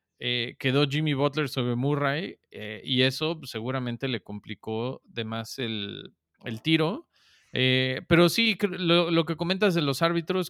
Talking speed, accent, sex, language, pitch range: 155 wpm, Mexican, male, Spanish, 120-155 Hz